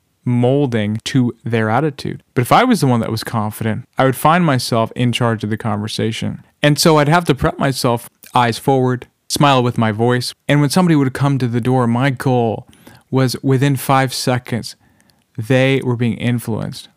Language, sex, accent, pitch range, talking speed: English, male, American, 115-140 Hz, 185 wpm